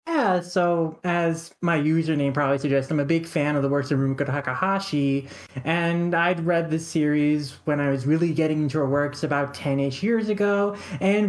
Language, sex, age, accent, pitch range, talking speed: English, male, 30-49, American, 140-180 Hz, 185 wpm